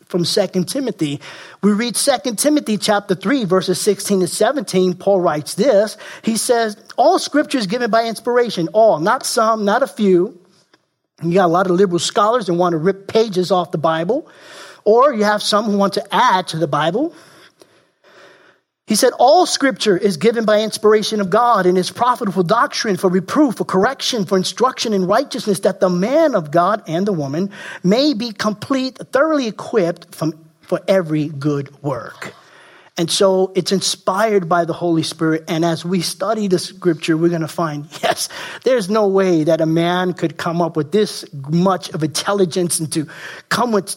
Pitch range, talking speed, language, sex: 175-220 Hz, 180 wpm, English, male